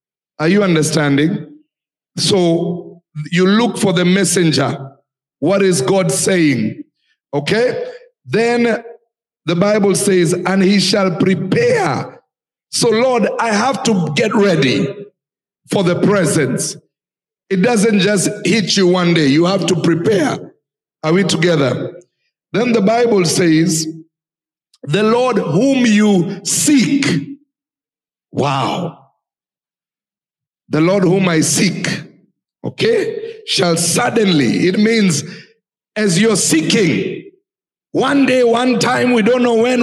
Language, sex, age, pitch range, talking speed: English, male, 60-79, 175-245 Hz, 120 wpm